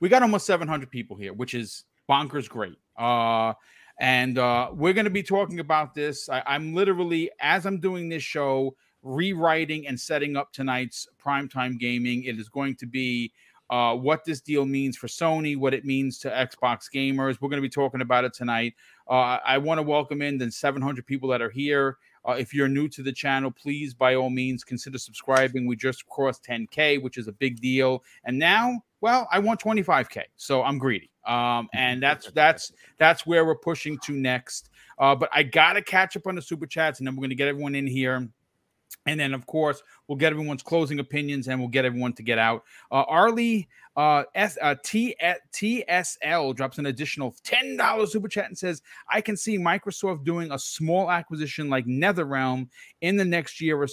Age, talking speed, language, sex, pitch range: 30-49, 200 wpm, English, male, 130-160 Hz